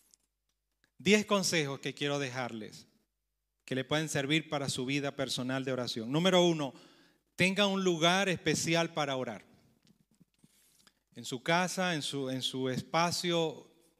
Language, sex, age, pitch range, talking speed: Romanian, male, 30-49, 145-175 Hz, 130 wpm